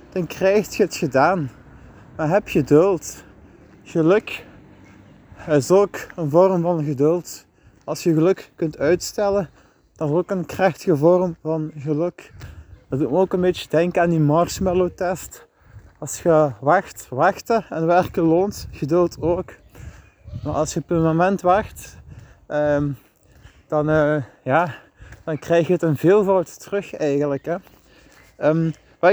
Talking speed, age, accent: 135 wpm, 20-39, Dutch